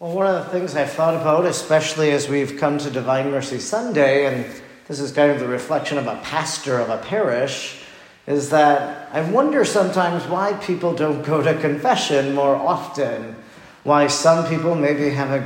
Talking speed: 185 wpm